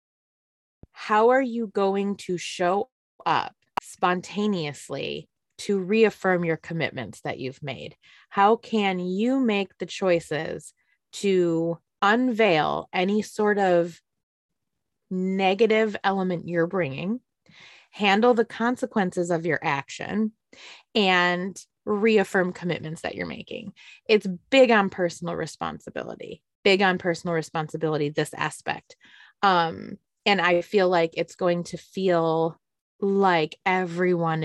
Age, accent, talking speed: 20-39, American, 110 wpm